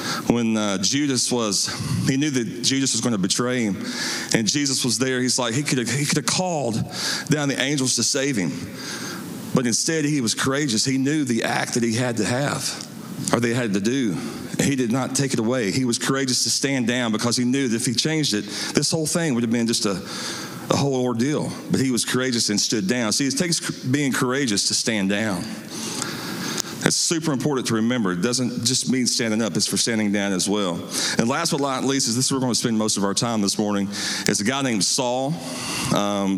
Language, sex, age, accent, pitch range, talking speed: English, male, 40-59, American, 115-145 Hz, 225 wpm